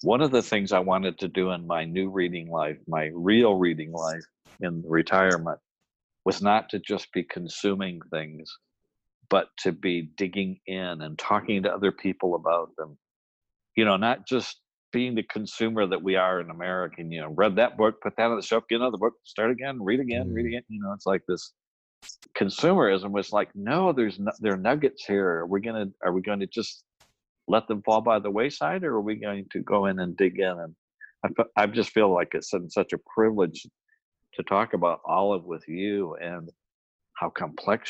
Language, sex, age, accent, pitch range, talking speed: English, male, 50-69, American, 90-110 Hz, 205 wpm